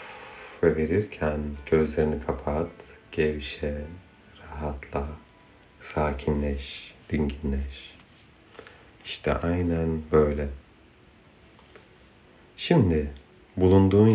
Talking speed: 55 wpm